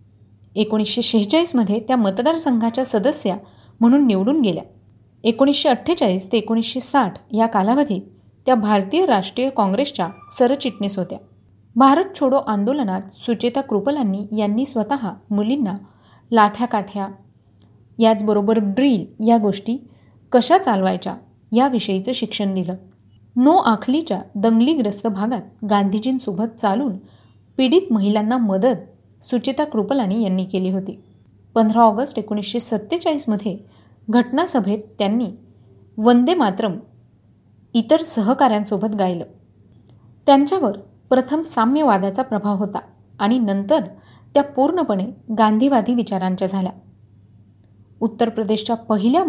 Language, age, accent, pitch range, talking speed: Marathi, 30-49, native, 195-255 Hz, 95 wpm